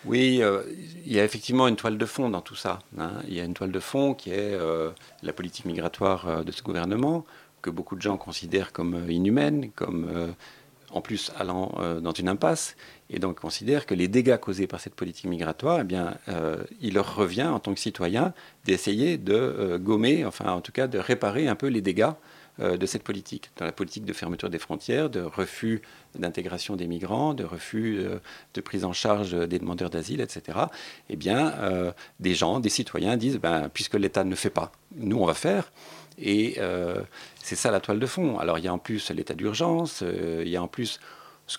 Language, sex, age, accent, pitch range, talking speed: French, male, 40-59, French, 85-115 Hz, 210 wpm